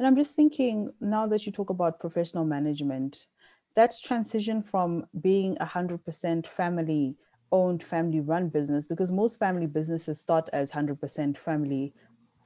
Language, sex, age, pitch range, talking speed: English, female, 20-39, 150-185 Hz, 130 wpm